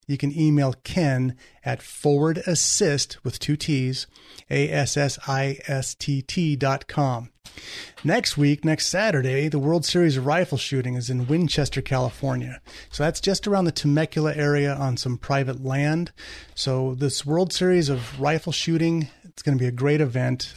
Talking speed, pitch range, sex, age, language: 150 wpm, 130-150 Hz, male, 30-49, English